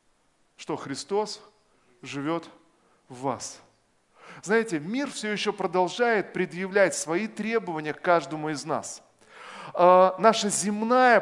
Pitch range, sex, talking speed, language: 180-230 Hz, male, 105 wpm, Russian